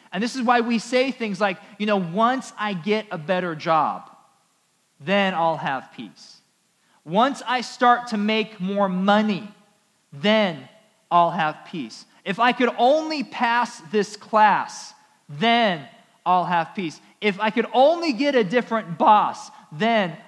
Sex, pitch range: male, 180-230 Hz